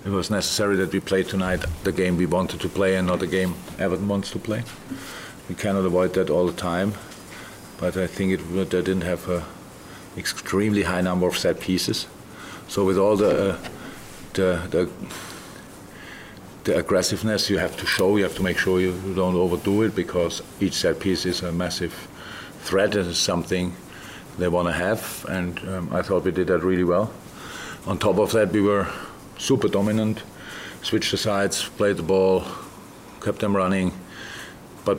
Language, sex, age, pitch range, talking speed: English, male, 50-69, 90-100 Hz, 180 wpm